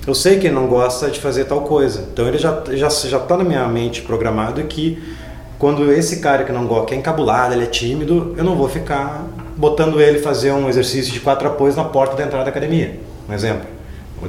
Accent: Brazilian